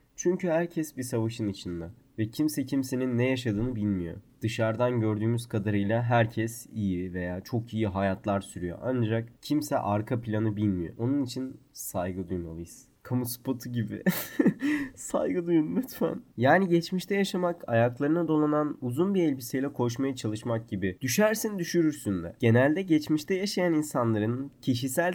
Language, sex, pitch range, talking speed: Turkish, male, 115-175 Hz, 130 wpm